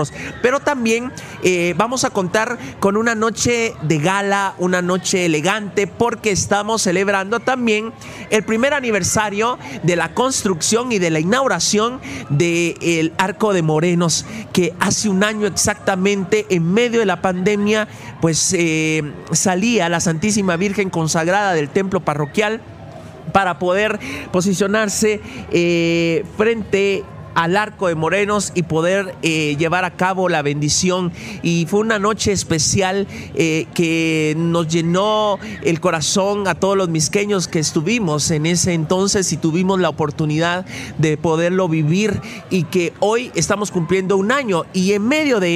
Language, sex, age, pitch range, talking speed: Spanish, male, 40-59, 165-210 Hz, 140 wpm